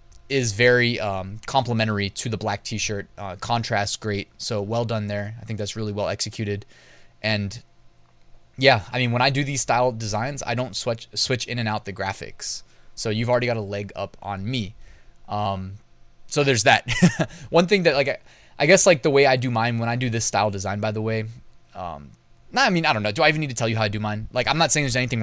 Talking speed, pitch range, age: 235 wpm, 105-130 Hz, 20-39